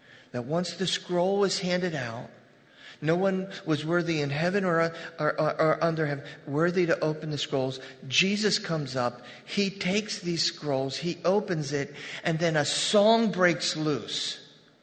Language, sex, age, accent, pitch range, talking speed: English, male, 40-59, American, 145-185 Hz, 160 wpm